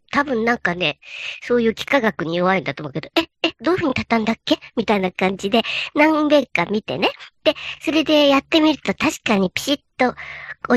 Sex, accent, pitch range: male, native, 210-295 Hz